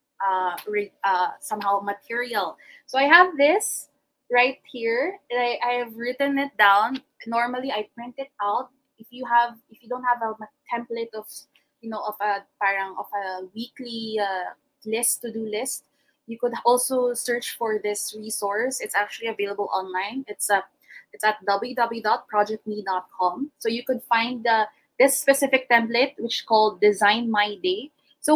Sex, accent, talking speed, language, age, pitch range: female, Filipino, 160 wpm, English, 20-39, 215-270 Hz